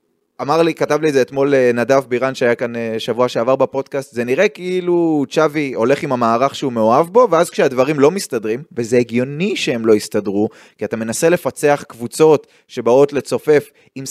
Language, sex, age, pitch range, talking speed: Hebrew, male, 20-39, 125-165 Hz, 170 wpm